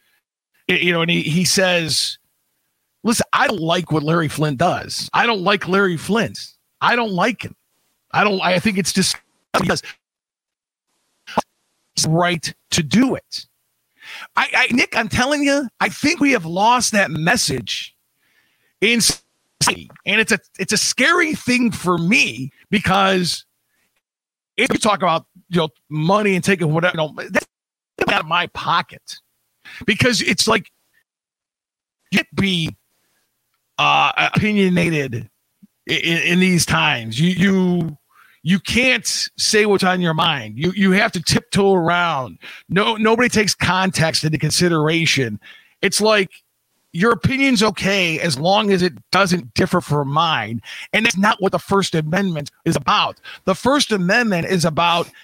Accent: American